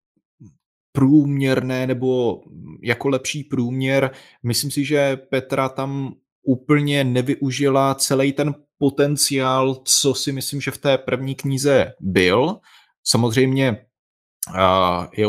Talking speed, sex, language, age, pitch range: 100 wpm, male, Czech, 30-49, 105-135 Hz